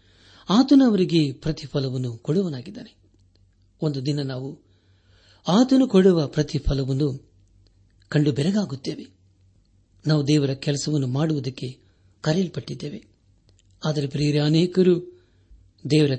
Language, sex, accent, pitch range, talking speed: Kannada, male, native, 100-155 Hz, 75 wpm